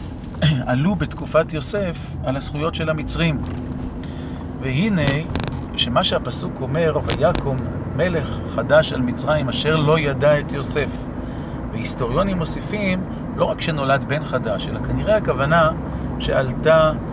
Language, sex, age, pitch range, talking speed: Hebrew, male, 40-59, 125-155 Hz, 110 wpm